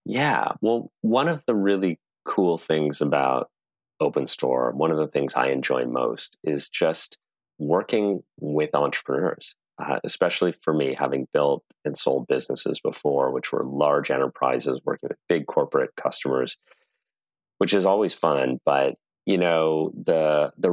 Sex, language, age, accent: male, English, 30-49, American